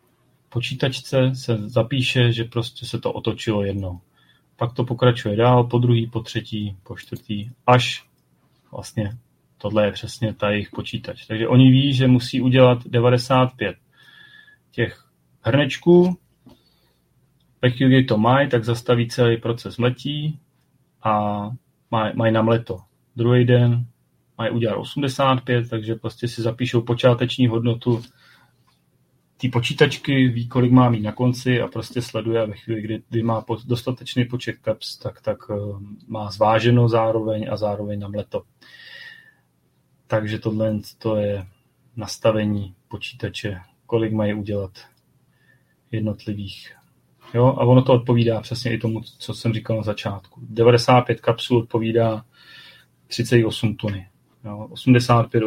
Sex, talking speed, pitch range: male, 130 wpm, 110-125 Hz